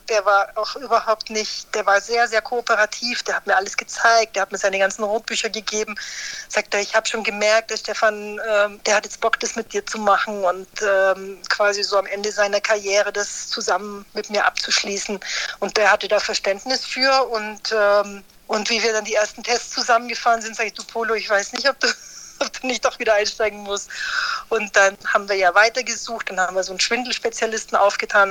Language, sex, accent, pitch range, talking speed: German, female, German, 200-225 Hz, 210 wpm